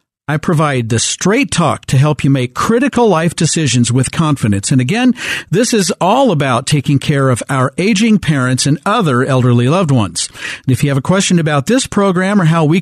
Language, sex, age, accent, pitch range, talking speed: English, male, 50-69, American, 140-195 Hz, 200 wpm